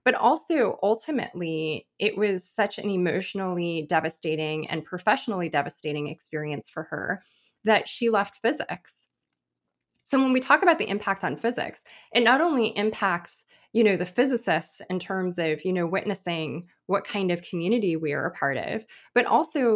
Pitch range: 170-220 Hz